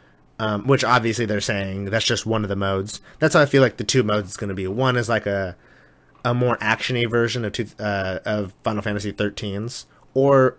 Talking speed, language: 220 wpm, English